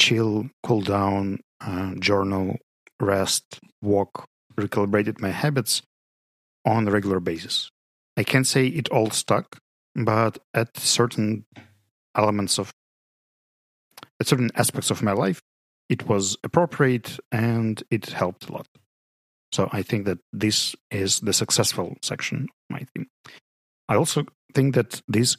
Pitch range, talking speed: 95-120 Hz, 130 wpm